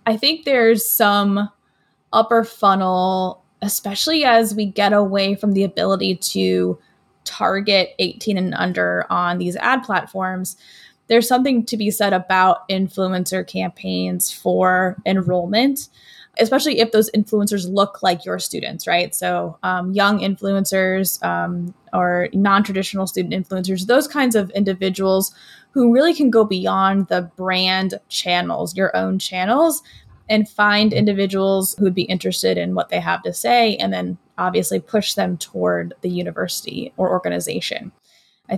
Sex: female